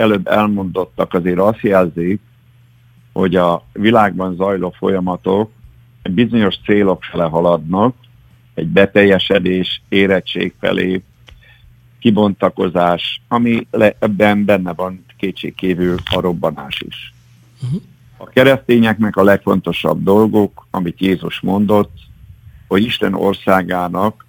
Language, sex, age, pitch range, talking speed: Hungarian, male, 50-69, 90-110 Hz, 95 wpm